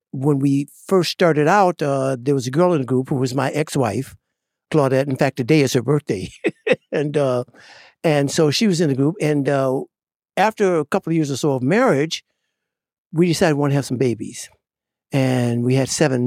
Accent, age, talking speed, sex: American, 60-79, 205 wpm, male